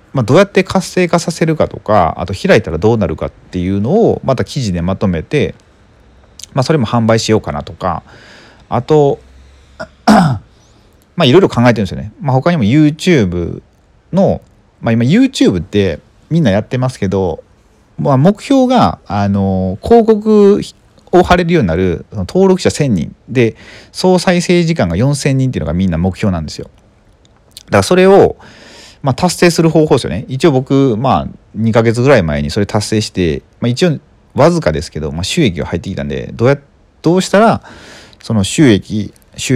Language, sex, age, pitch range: Japanese, male, 40-59, 100-160 Hz